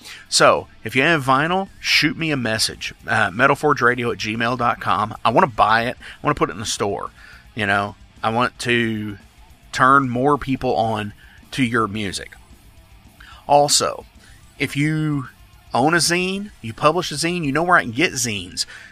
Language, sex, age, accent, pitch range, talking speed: English, male, 40-59, American, 110-140 Hz, 170 wpm